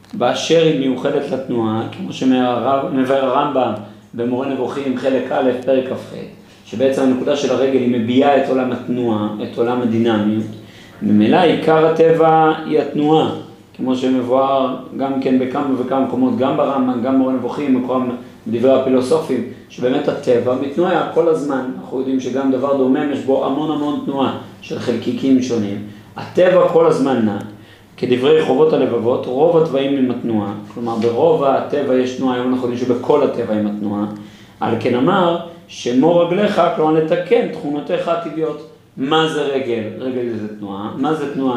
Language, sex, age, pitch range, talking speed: Hebrew, male, 40-59, 120-160 Hz, 150 wpm